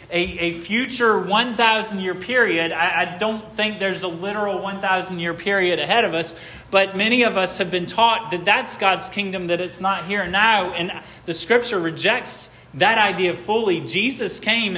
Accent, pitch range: American, 135-200 Hz